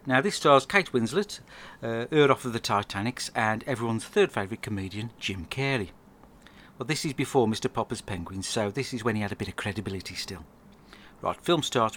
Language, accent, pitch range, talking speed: English, British, 100-135 Hz, 195 wpm